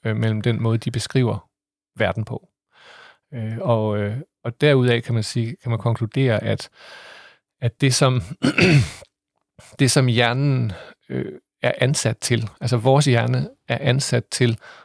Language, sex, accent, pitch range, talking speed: Danish, male, native, 115-135 Hz, 135 wpm